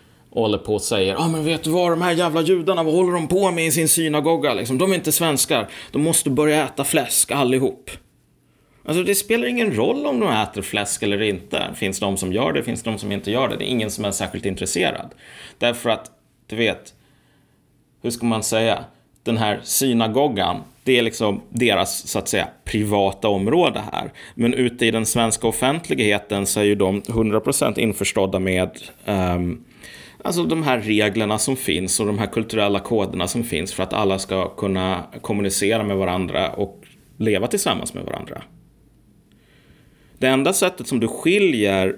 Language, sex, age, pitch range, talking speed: Swedish, male, 30-49, 100-130 Hz, 185 wpm